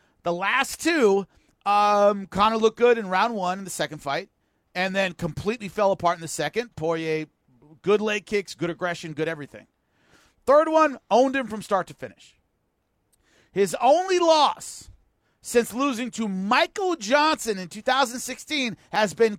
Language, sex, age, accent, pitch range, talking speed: English, male, 40-59, American, 170-250 Hz, 155 wpm